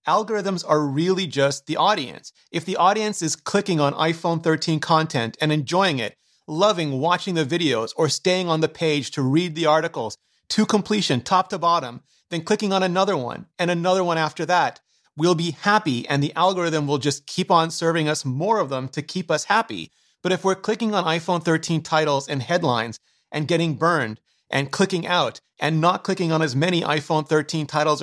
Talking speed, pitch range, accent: 195 wpm, 145-180 Hz, American